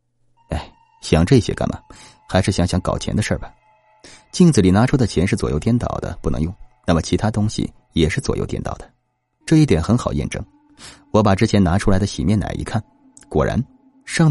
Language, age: Chinese, 30-49